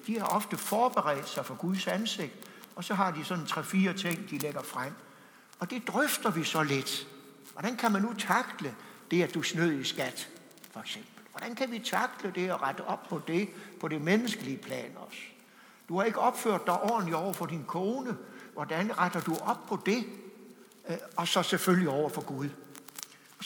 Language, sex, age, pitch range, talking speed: English, male, 60-79, 160-215 Hz, 195 wpm